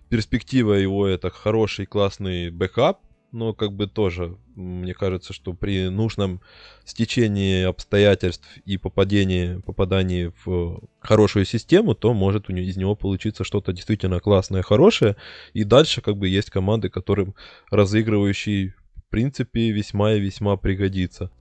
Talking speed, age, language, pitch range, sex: 130 wpm, 20-39, Russian, 95-110 Hz, male